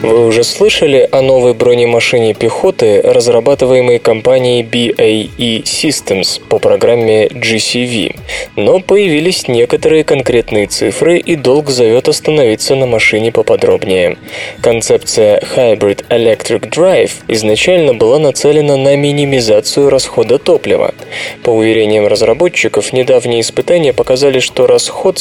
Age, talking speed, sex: 20-39, 105 wpm, male